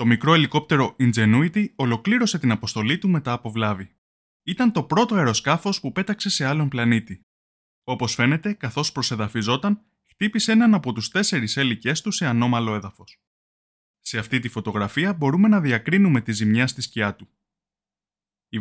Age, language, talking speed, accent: 20-39, Greek, 150 wpm, native